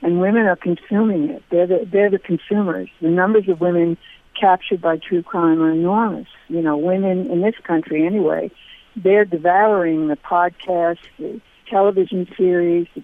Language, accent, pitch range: English, American, 170-210 Hz